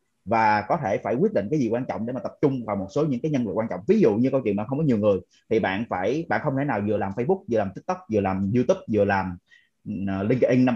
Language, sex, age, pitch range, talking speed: Vietnamese, male, 20-39, 110-155 Hz, 295 wpm